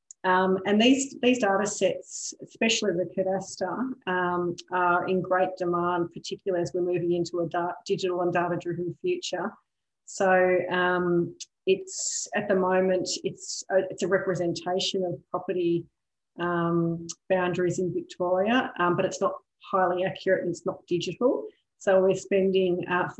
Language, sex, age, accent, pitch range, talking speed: English, female, 40-59, Australian, 175-190 Hz, 135 wpm